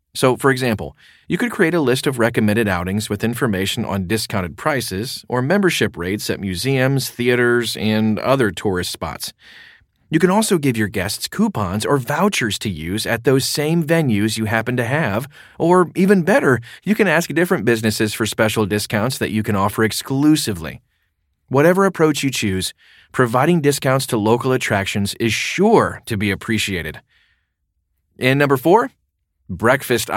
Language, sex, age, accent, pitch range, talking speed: English, male, 30-49, American, 105-140 Hz, 155 wpm